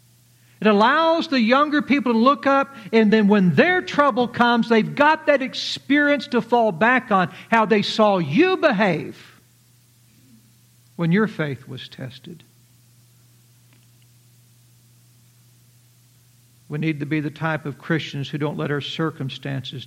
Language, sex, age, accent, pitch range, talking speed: English, male, 60-79, American, 120-190 Hz, 135 wpm